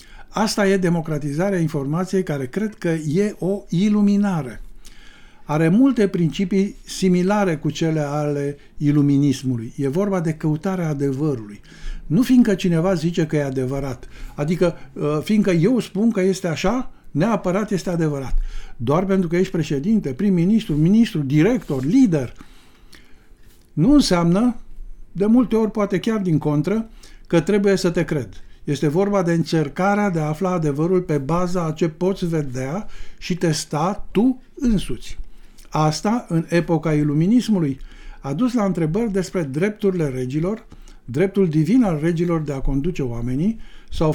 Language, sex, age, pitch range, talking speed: Romanian, male, 60-79, 150-205 Hz, 135 wpm